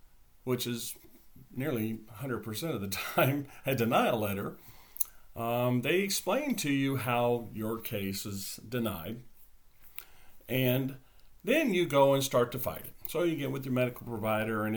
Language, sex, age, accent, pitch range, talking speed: English, male, 40-59, American, 100-125 Hz, 150 wpm